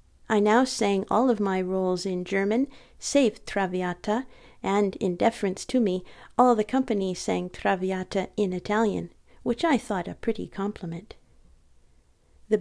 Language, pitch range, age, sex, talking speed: English, 185-235 Hz, 40-59, female, 145 wpm